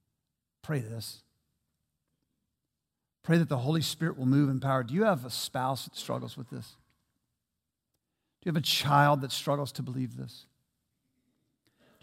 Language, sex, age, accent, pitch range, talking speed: English, male, 50-69, American, 125-155 Hz, 155 wpm